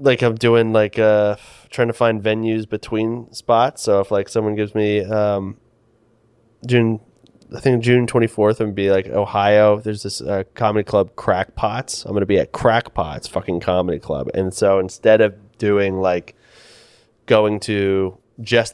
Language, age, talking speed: English, 20-39, 165 wpm